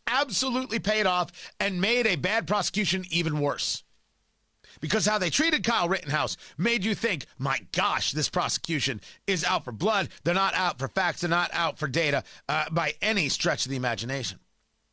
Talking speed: 175 wpm